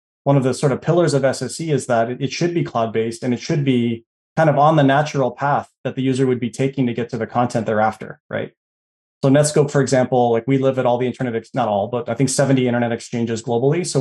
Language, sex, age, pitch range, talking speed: English, male, 20-39, 120-145 Hz, 255 wpm